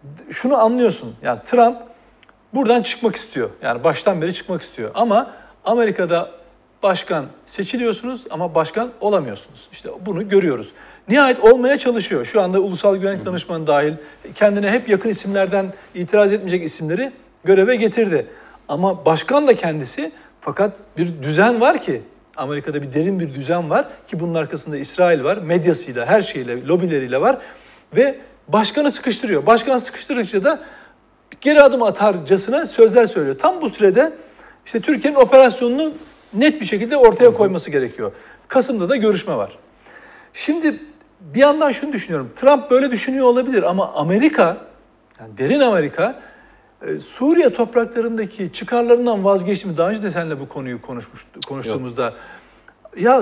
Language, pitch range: Turkish, 180-260 Hz